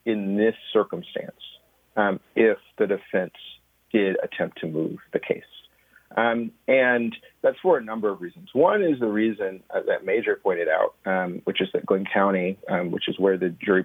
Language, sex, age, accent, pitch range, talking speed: English, male, 40-59, American, 95-130 Hz, 180 wpm